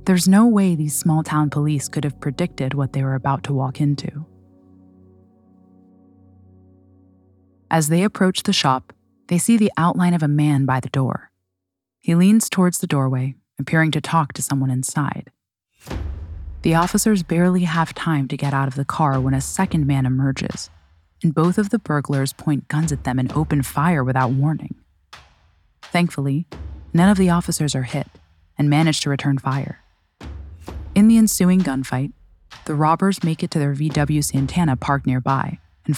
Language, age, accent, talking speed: English, 20-39, American, 165 wpm